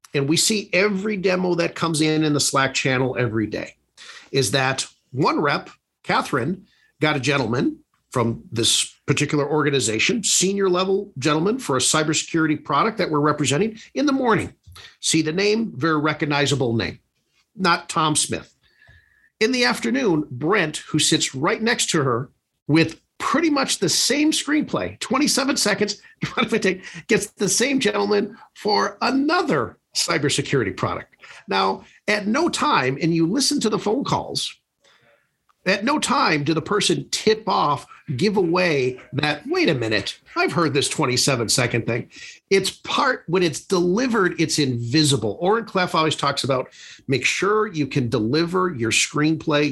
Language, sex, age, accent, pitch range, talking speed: English, male, 50-69, American, 140-210 Hz, 150 wpm